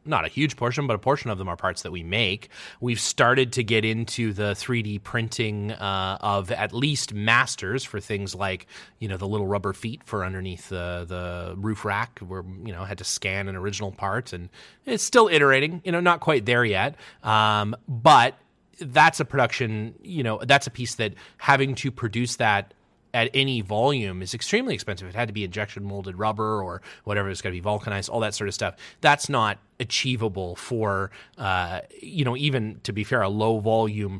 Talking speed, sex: 205 wpm, male